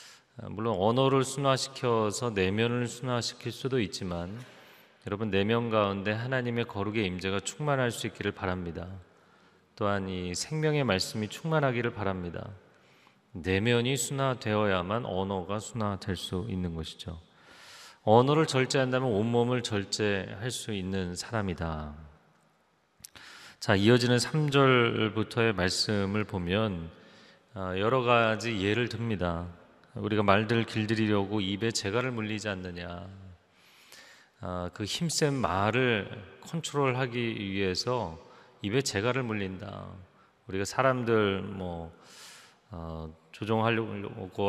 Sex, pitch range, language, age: male, 95-120 Hz, Korean, 30-49